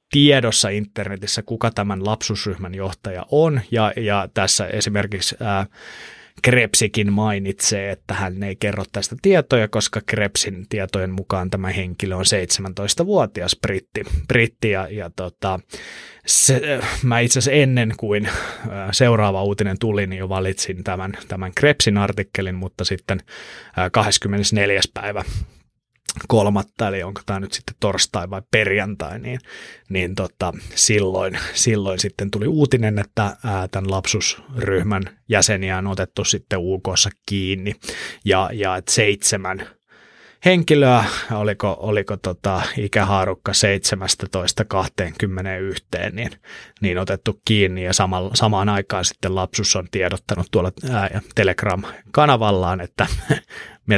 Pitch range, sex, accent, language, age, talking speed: 95-110 Hz, male, native, Finnish, 20-39, 120 wpm